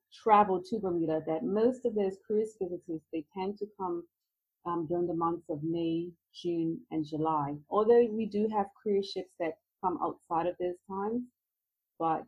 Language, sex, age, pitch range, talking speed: English, female, 30-49, 160-195 Hz, 165 wpm